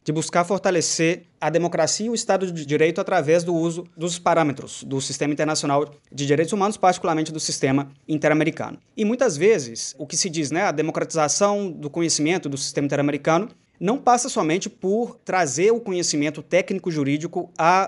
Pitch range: 145-175 Hz